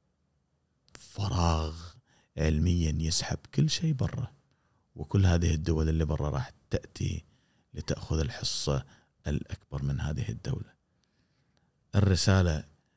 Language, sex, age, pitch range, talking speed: Arabic, male, 30-49, 80-110 Hz, 95 wpm